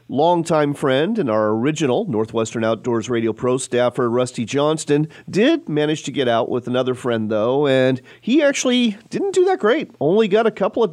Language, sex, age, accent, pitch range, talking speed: English, male, 40-59, American, 120-180 Hz, 180 wpm